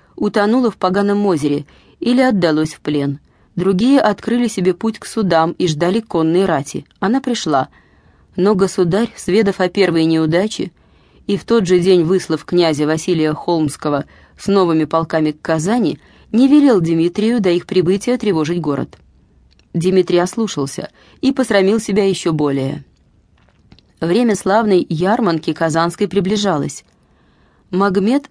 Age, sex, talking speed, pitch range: 20-39, female, 130 wpm, 160-205 Hz